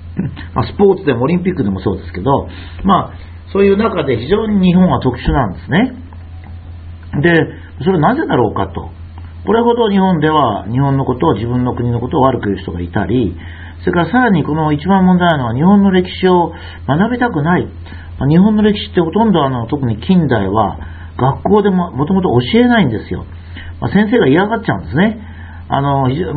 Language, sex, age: Japanese, male, 50-69